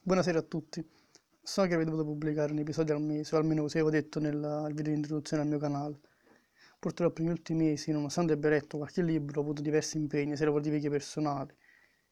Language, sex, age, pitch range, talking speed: Italian, male, 20-39, 150-160 Hz, 205 wpm